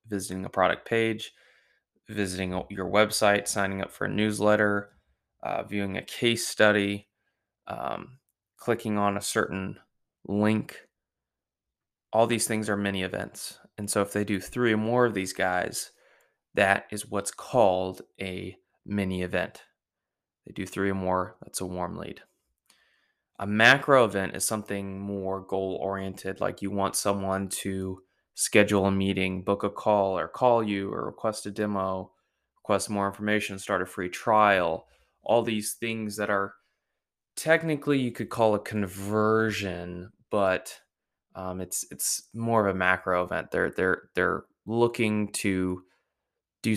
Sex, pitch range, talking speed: male, 95-105 Hz, 145 wpm